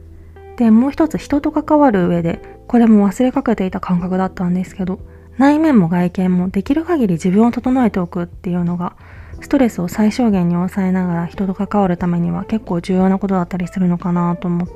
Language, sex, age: Japanese, female, 20-39